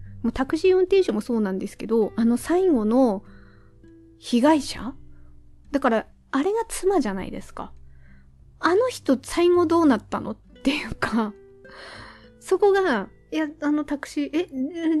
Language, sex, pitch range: Japanese, female, 220-295 Hz